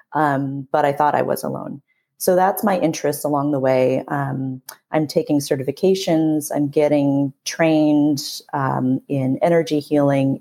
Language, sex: English, female